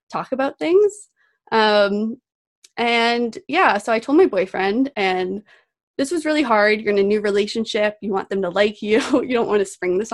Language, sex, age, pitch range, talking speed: English, female, 20-39, 195-245 Hz, 195 wpm